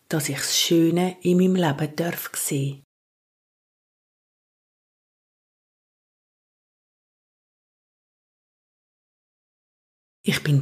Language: German